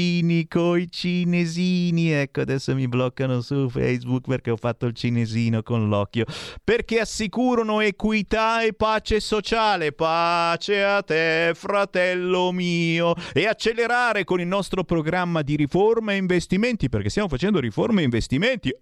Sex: male